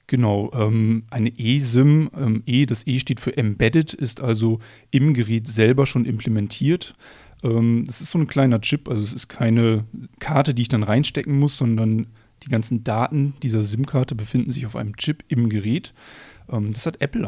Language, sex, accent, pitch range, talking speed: German, male, German, 115-135 Hz, 170 wpm